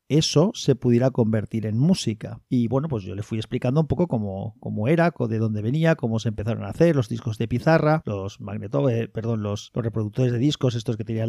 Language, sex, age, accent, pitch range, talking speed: Spanish, male, 40-59, Spanish, 115-155 Hz, 225 wpm